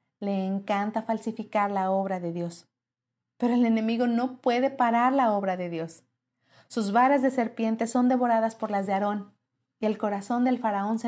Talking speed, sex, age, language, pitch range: 180 wpm, female, 40-59, Spanish, 185-250 Hz